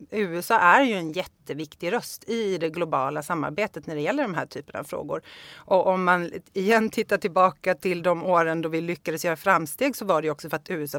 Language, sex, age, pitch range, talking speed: Swedish, female, 30-49, 160-205 Hz, 215 wpm